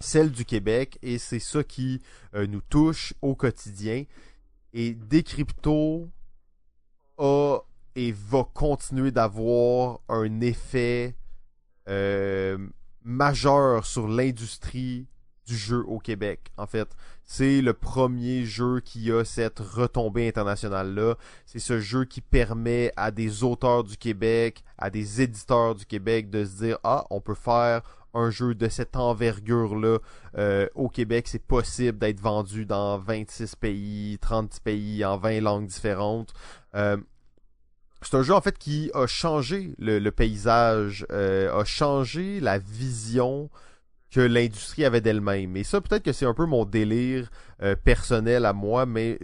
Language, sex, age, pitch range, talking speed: French, male, 20-39, 105-125 Hz, 145 wpm